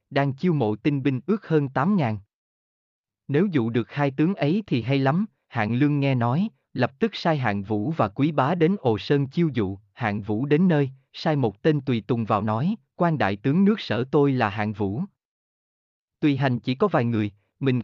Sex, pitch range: male, 110-160 Hz